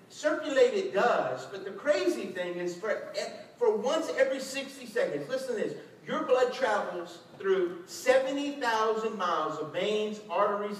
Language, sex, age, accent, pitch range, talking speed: English, male, 50-69, American, 225-345 Hz, 145 wpm